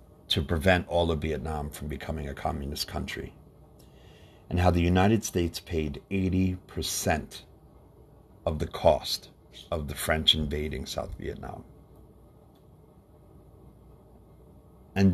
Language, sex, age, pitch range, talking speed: English, male, 50-69, 85-125 Hz, 105 wpm